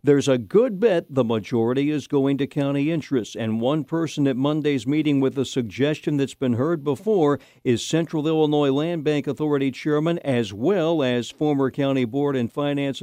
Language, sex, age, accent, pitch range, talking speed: English, male, 60-79, American, 120-155 Hz, 180 wpm